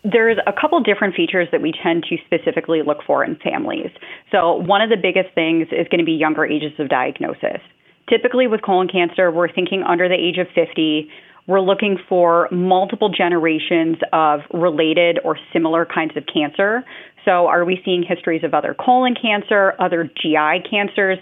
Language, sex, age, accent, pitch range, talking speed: English, female, 30-49, American, 170-195 Hz, 180 wpm